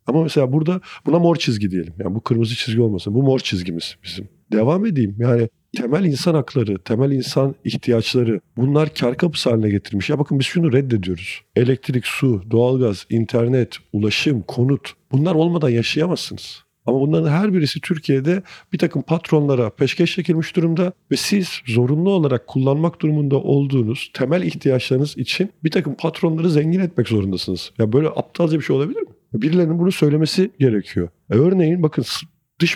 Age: 50-69